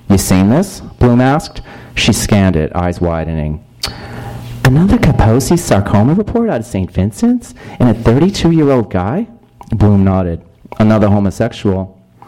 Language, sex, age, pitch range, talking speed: English, male, 40-59, 90-125 Hz, 125 wpm